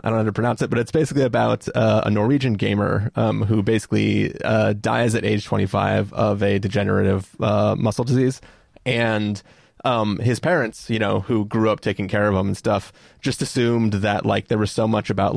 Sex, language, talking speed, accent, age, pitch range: male, English, 205 wpm, American, 30-49, 100-120 Hz